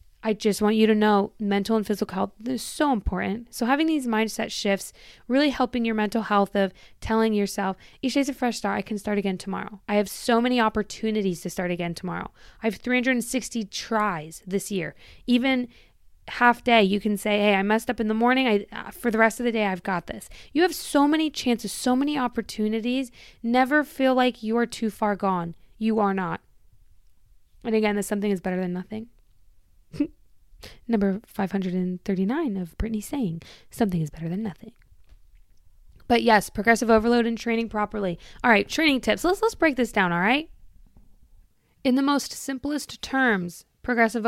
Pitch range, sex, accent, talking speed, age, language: 195-240 Hz, female, American, 185 wpm, 20-39, English